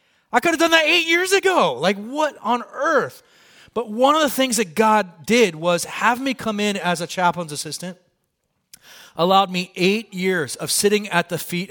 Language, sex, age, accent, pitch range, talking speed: English, male, 30-49, American, 135-180 Hz, 195 wpm